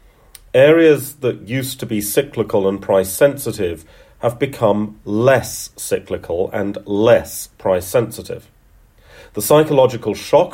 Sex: male